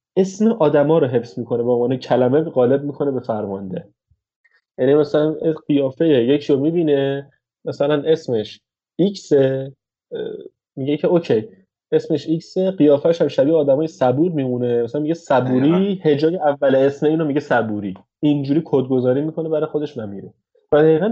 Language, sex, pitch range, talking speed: Persian, male, 120-155 Hz, 140 wpm